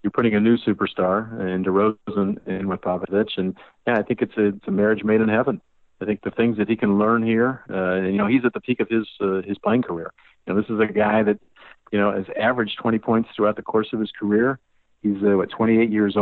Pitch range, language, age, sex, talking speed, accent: 100-115 Hz, English, 50-69, male, 250 wpm, American